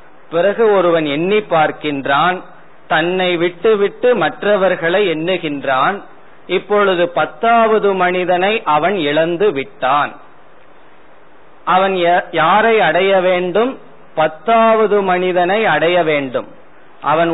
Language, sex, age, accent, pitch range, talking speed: Tamil, male, 40-59, native, 160-200 Hz, 85 wpm